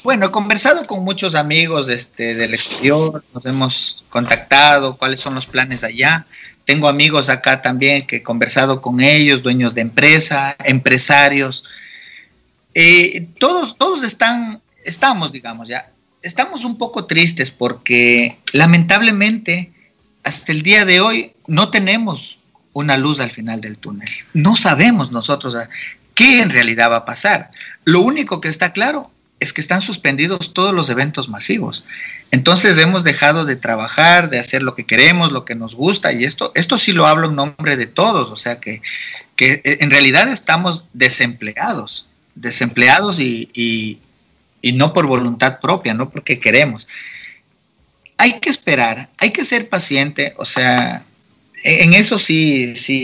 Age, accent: 40-59, Mexican